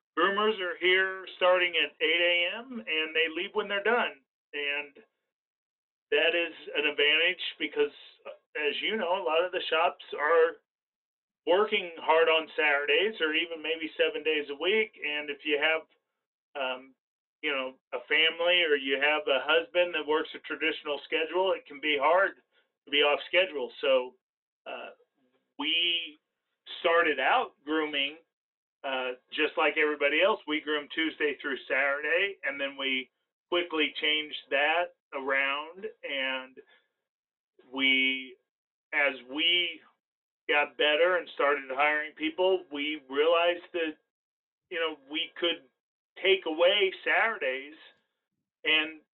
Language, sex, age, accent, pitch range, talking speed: English, male, 40-59, American, 150-210 Hz, 135 wpm